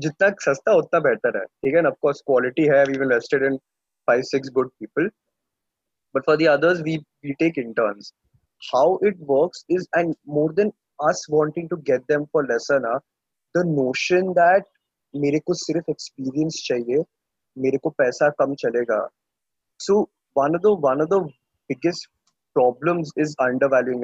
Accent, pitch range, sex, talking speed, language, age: Indian, 135-170 Hz, male, 145 wpm, English, 20-39